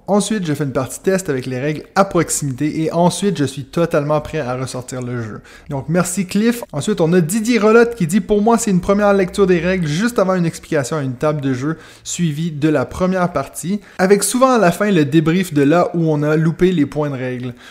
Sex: male